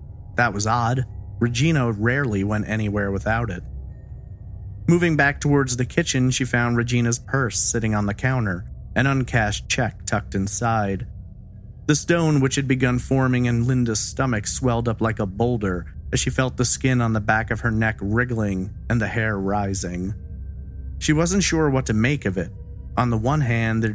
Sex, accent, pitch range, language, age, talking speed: male, American, 105-130 Hz, English, 30-49, 175 wpm